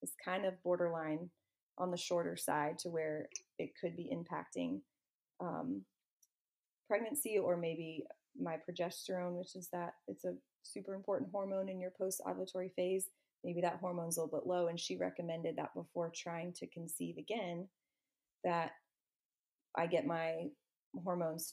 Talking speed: 150 wpm